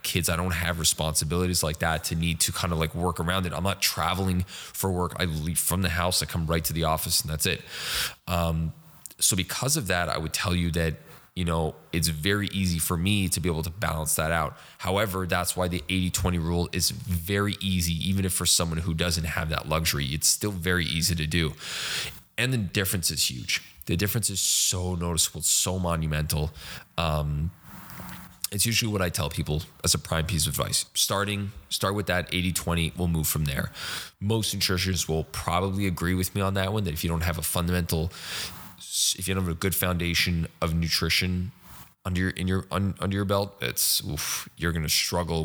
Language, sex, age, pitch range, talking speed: English, male, 20-39, 80-95 Hz, 210 wpm